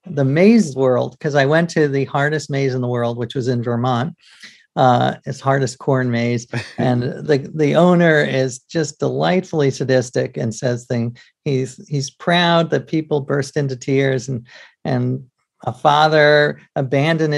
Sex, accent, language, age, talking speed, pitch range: male, American, English, 50-69, 160 wpm, 135-170 Hz